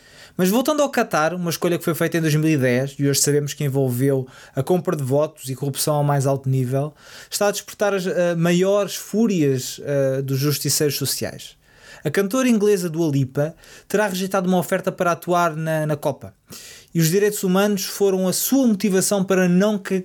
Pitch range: 145-190 Hz